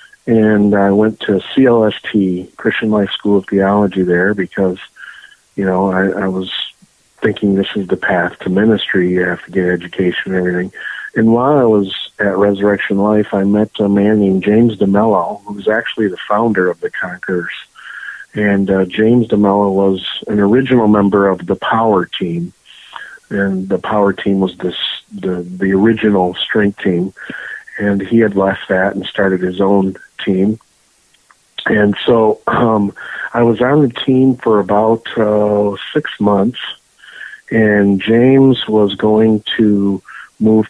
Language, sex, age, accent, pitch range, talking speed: English, male, 50-69, American, 95-110 Hz, 155 wpm